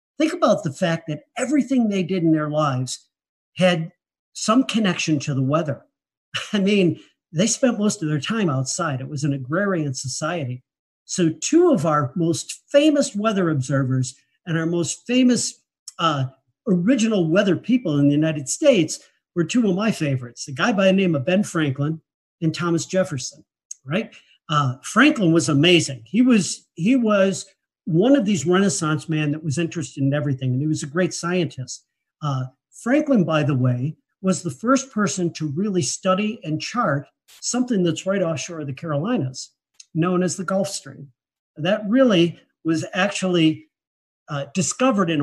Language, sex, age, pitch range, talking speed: English, male, 50-69, 145-195 Hz, 165 wpm